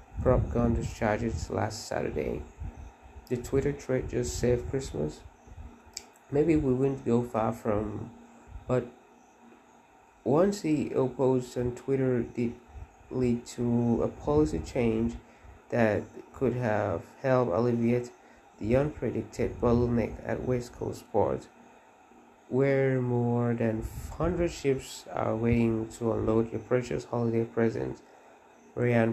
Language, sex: English, male